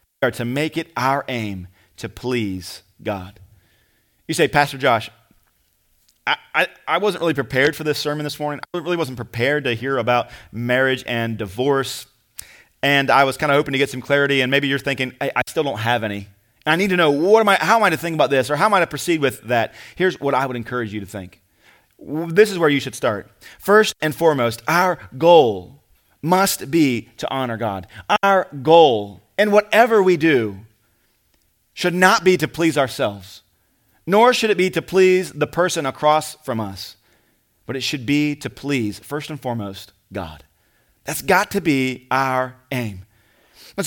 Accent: American